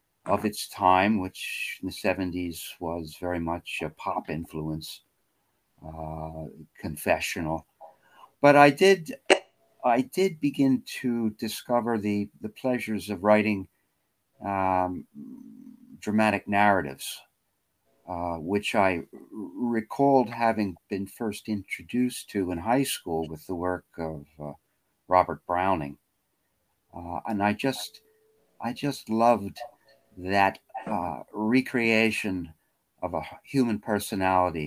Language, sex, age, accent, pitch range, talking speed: English, male, 60-79, American, 90-120 Hz, 110 wpm